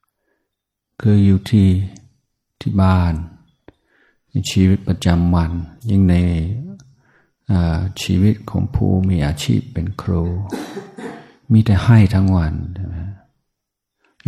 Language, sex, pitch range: Thai, male, 90-105 Hz